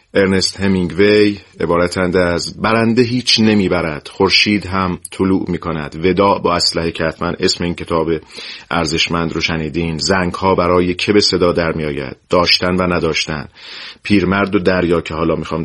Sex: male